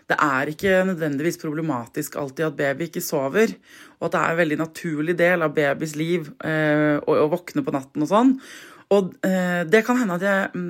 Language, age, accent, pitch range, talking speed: English, 20-39, Swedish, 155-195 Hz, 210 wpm